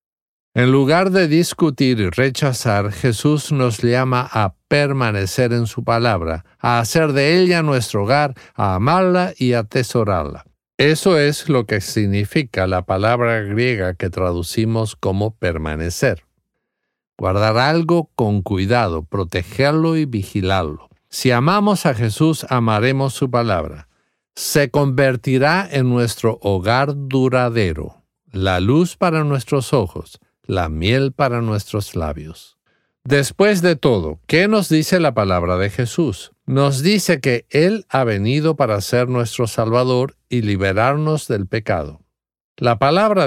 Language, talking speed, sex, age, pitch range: English, 130 wpm, male, 50-69, 100-140 Hz